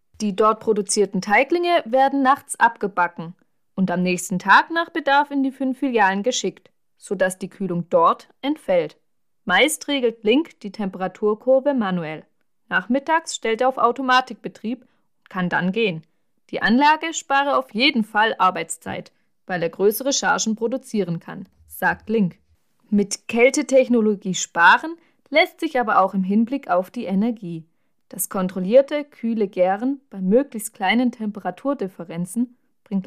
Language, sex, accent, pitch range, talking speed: German, female, German, 190-270 Hz, 135 wpm